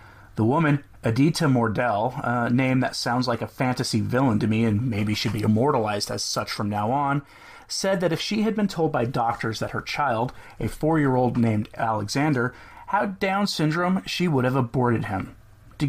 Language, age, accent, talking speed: English, 30-49, American, 185 wpm